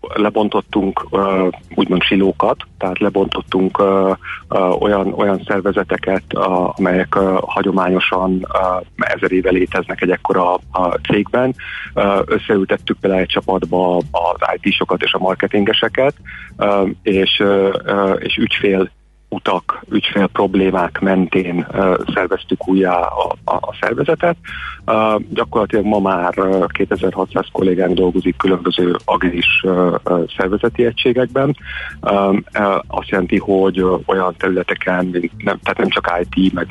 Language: Hungarian